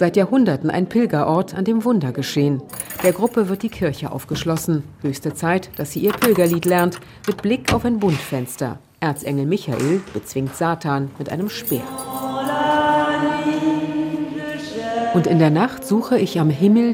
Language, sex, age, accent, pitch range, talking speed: German, female, 50-69, German, 150-220 Hz, 145 wpm